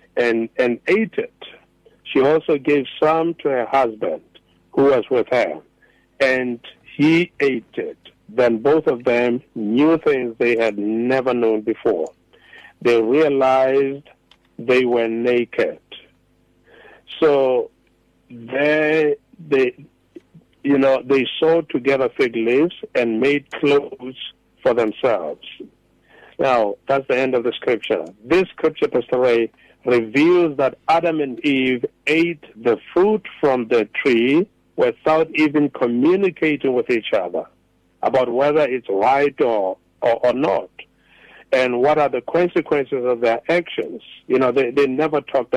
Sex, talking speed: male, 130 wpm